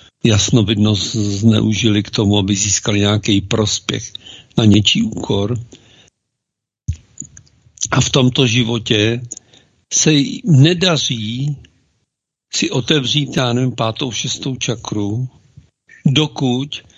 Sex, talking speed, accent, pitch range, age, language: male, 90 wpm, native, 110-140 Hz, 60-79, Czech